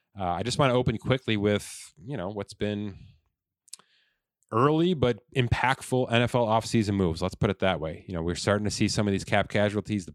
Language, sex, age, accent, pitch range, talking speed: English, male, 30-49, American, 95-115 Hz, 205 wpm